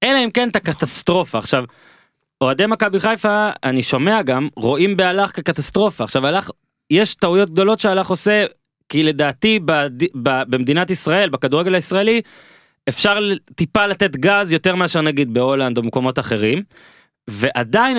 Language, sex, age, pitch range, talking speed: Hebrew, male, 20-39, 125-180 Hz, 135 wpm